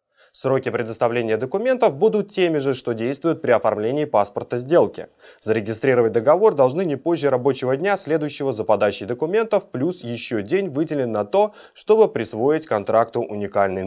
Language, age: Russian, 20-39